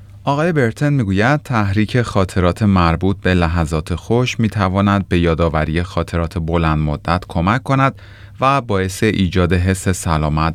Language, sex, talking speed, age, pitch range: Persian, male, 125 wpm, 30-49, 85-115 Hz